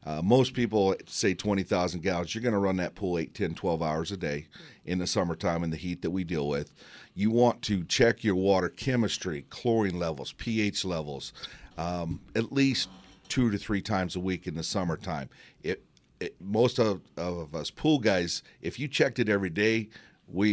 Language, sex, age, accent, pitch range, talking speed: English, male, 40-59, American, 85-110 Hz, 195 wpm